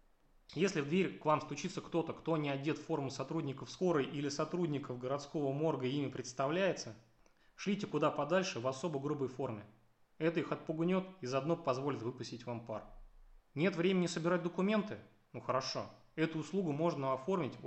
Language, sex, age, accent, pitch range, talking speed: Russian, male, 20-39, native, 120-165 Hz, 155 wpm